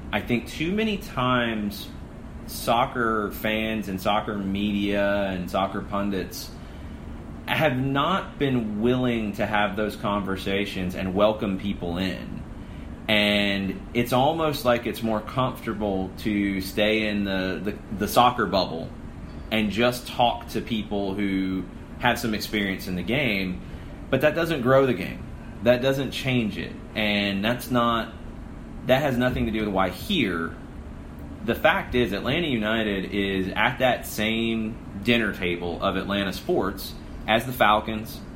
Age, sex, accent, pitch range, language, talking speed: 30-49, male, American, 95-120 Hz, English, 140 wpm